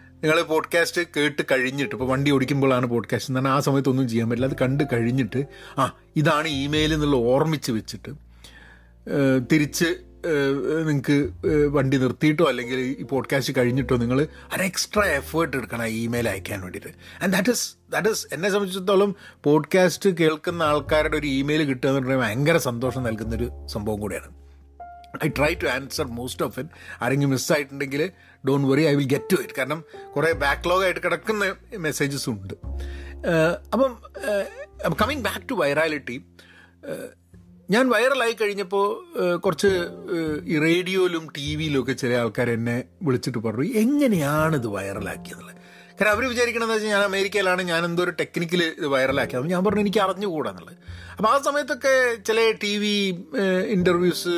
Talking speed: 140 wpm